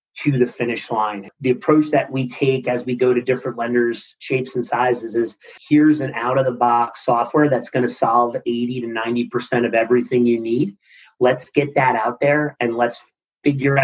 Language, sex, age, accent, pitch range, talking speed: English, male, 30-49, American, 120-135 Hz, 195 wpm